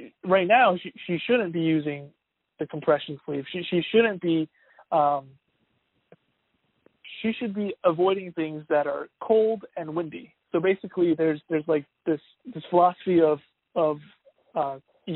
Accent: American